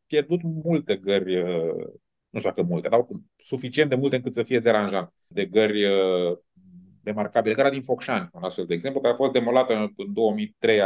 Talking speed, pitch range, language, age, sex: 175 wpm, 95-135 Hz, Romanian, 30-49, male